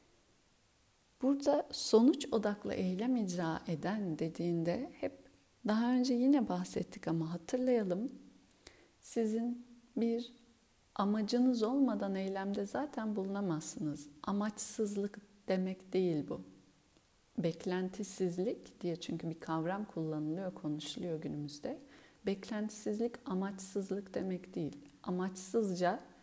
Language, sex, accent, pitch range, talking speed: Turkish, female, native, 175-240 Hz, 85 wpm